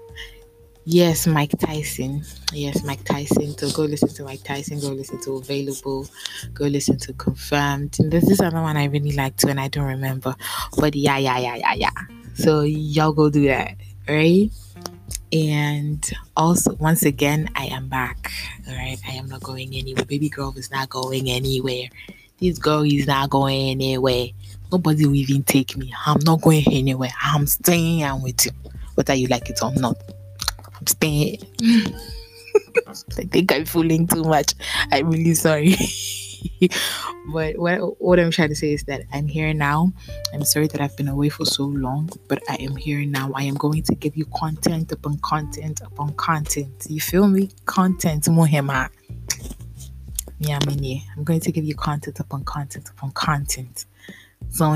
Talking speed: 165 wpm